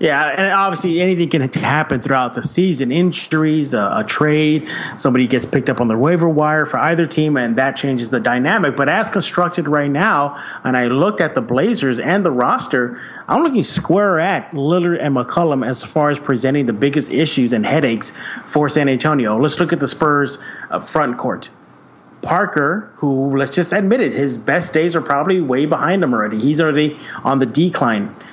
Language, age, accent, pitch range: English, 30-49, American, 140-175 Hz